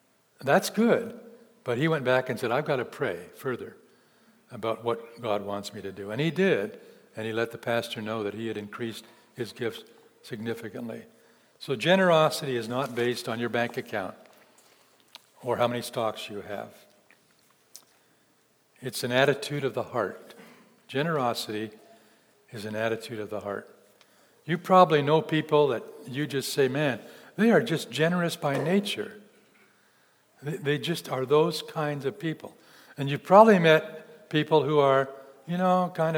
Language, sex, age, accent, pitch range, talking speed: English, male, 60-79, American, 120-175 Hz, 160 wpm